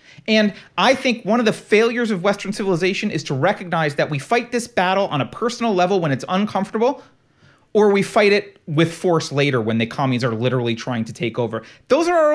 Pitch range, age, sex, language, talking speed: 160-230 Hz, 30-49, male, English, 215 wpm